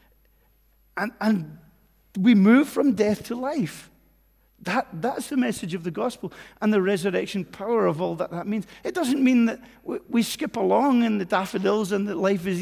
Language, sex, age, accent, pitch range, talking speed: English, male, 40-59, British, 145-215 Hz, 185 wpm